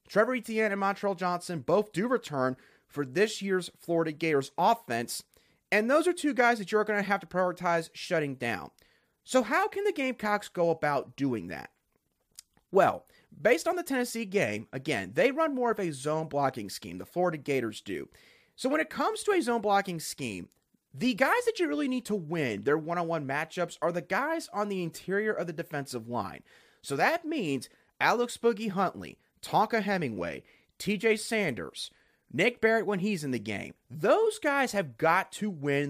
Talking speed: 180 wpm